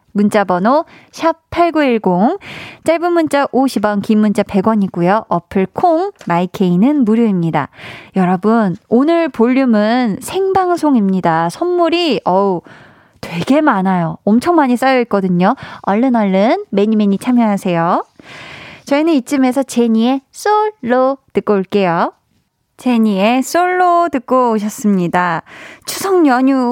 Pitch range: 195-260 Hz